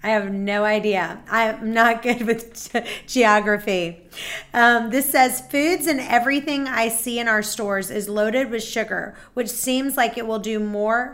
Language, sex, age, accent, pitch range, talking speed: English, female, 30-49, American, 205-245 Hz, 165 wpm